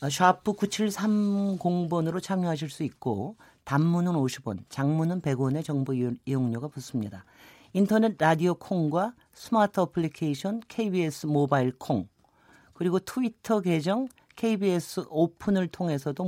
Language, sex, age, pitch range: Korean, male, 40-59, 145-210 Hz